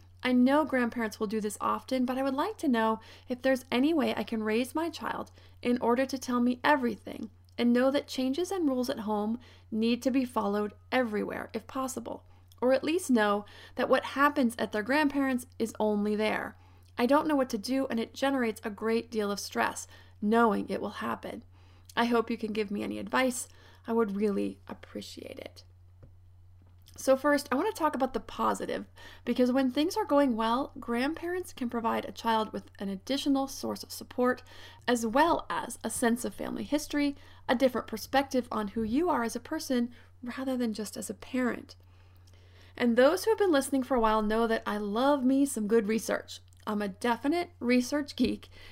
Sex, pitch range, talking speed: female, 210-265 Hz, 195 wpm